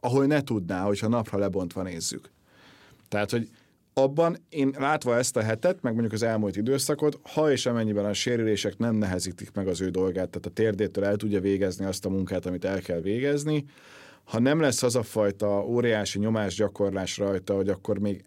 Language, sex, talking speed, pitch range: Hungarian, male, 185 wpm, 95-120 Hz